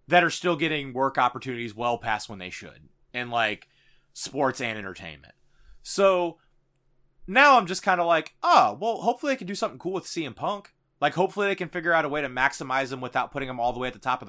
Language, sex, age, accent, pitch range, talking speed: English, male, 30-49, American, 125-175 Hz, 230 wpm